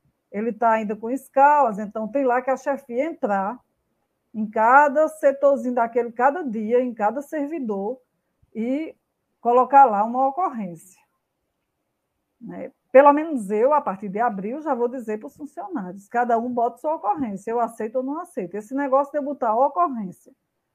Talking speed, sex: 160 wpm, female